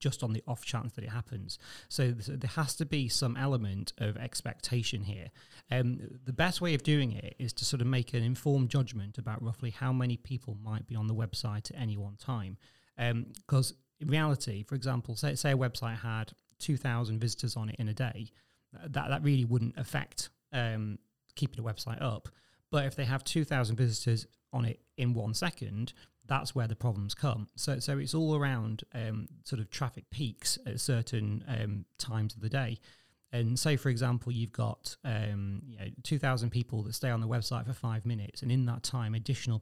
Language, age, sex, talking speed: English, 30-49, male, 200 wpm